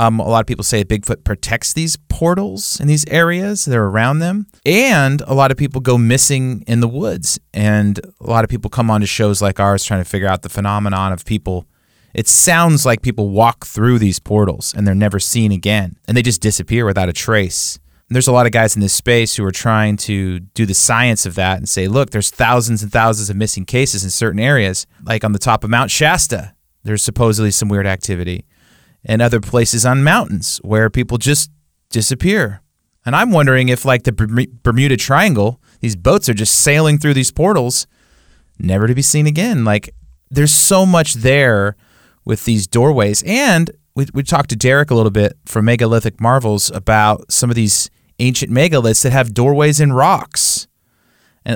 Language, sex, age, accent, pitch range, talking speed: English, male, 30-49, American, 105-135 Hz, 195 wpm